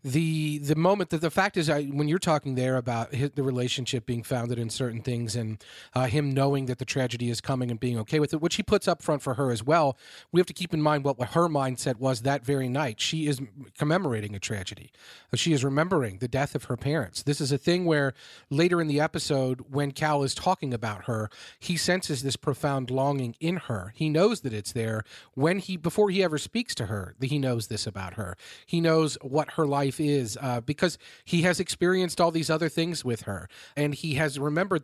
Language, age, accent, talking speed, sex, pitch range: English, 40-59, American, 225 wpm, male, 130-160 Hz